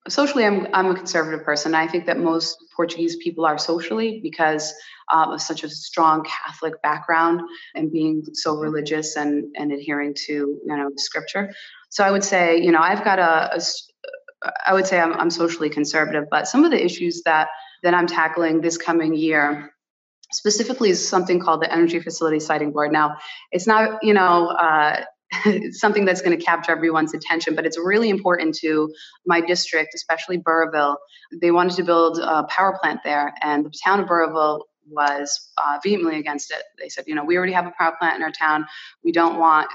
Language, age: English, 20-39